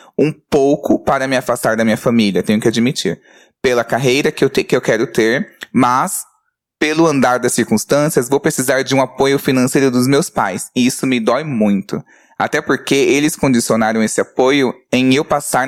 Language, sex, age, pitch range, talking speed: Portuguese, male, 20-39, 120-145 Hz, 175 wpm